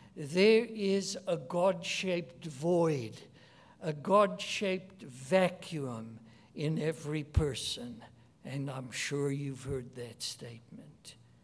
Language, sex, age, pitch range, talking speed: English, male, 60-79, 130-195 Hz, 95 wpm